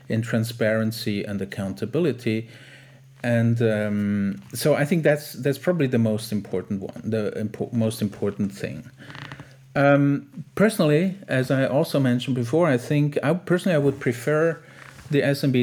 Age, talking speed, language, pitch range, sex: 40-59, 140 wpm, English, 110-140 Hz, male